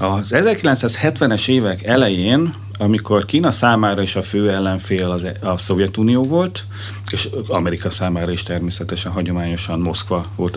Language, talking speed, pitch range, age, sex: Hungarian, 125 wpm, 90-105 Hz, 40-59, male